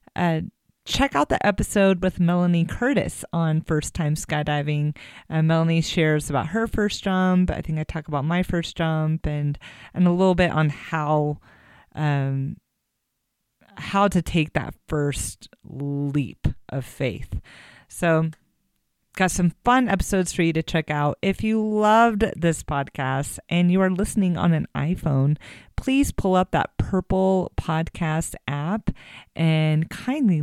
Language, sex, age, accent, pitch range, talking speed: English, female, 30-49, American, 155-215 Hz, 145 wpm